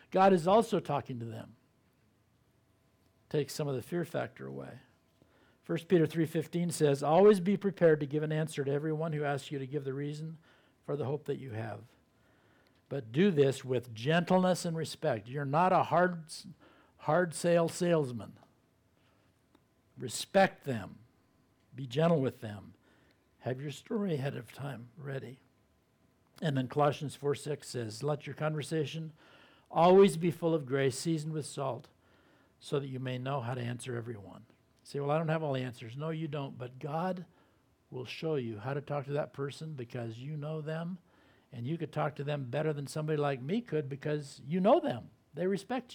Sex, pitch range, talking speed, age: male, 125-160 Hz, 175 wpm, 60-79